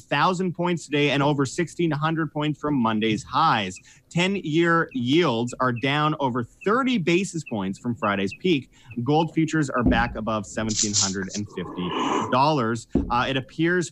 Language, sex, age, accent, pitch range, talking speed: English, male, 30-49, American, 125-165 Hz, 145 wpm